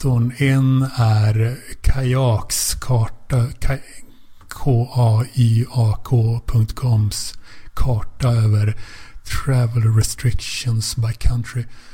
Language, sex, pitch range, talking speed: Swedish, male, 110-120 Hz, 55 wpm